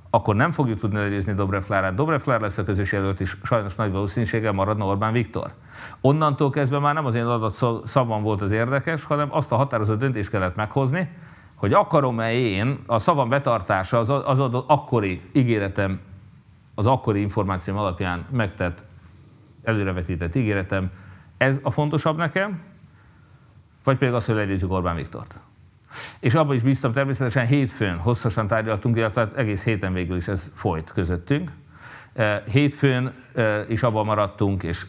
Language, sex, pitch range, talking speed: Hungarian, male, 95-125 Hz, 150 wpm